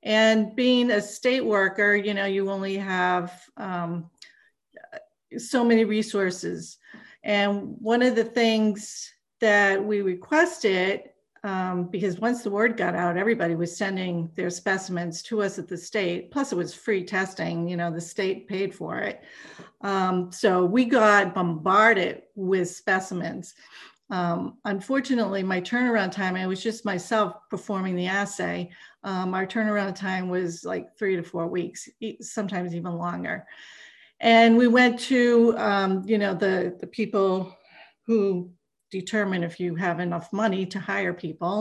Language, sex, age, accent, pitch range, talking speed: English, female, 50-69, American, 180-225 Hz, 150 wpm